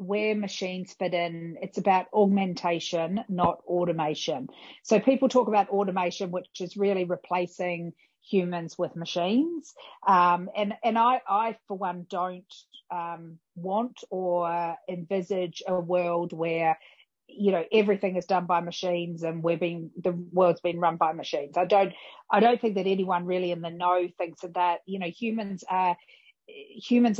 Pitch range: 175-205 Hz